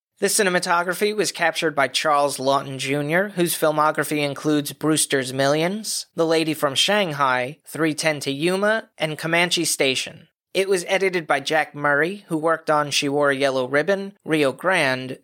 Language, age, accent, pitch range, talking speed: English, 30-49, American, 140-185 Hz, 155 wpm